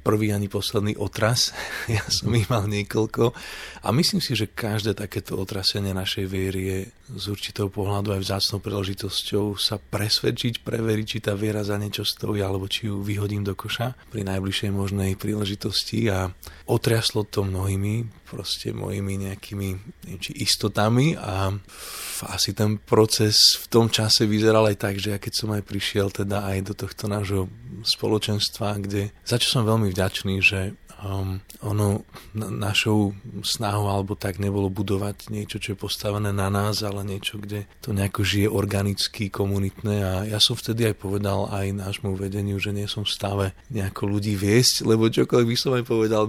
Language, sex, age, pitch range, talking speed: Slovak, male, 30-49, 100-110 Hz, 165 wpm